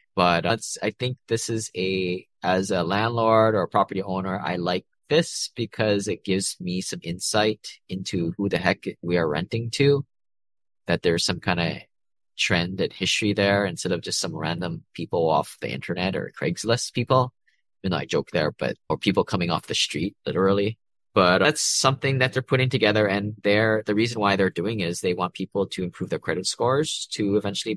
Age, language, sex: 20-39, English, male